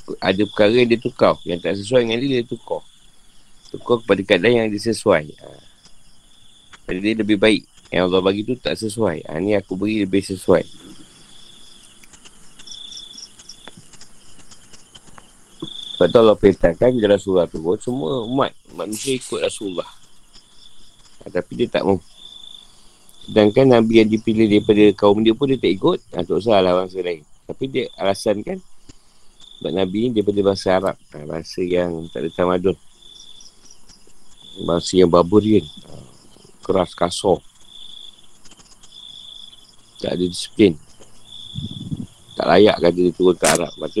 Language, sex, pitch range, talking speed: Malay, male, 95-120 Hz, 135 wpm